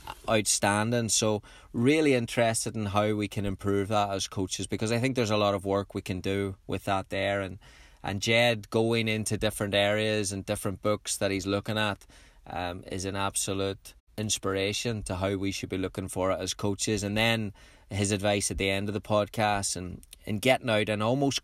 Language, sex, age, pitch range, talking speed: English, male, 20-39, 100-110 Hz, 200 wpm